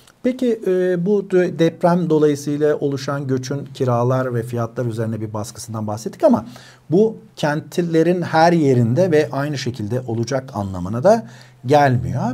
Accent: native